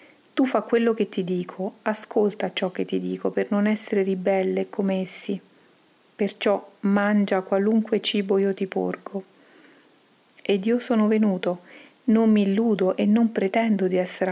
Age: 40-59